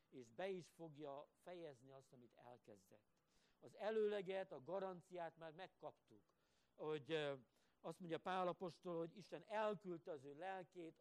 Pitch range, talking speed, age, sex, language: 130-180 Hz, 135 wpm, 60-79, male, Hungarian